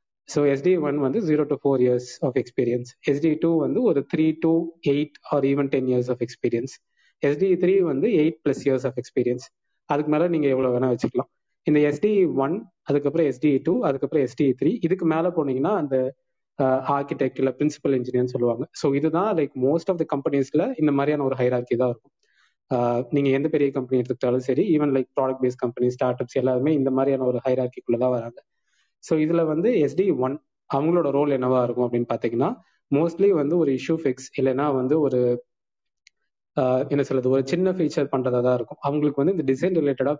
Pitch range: 130-155 Hz